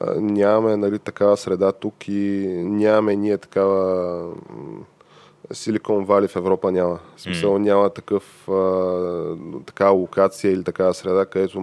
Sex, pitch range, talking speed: male, 95-105 Hz, 115 wpm